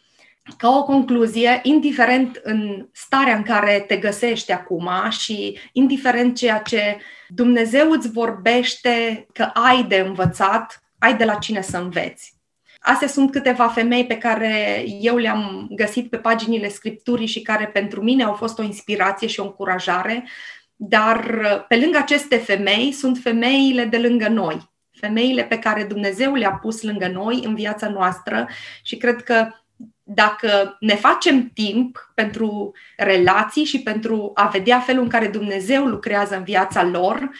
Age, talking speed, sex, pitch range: 20-39, 150 wpm, female, 205-245 Hz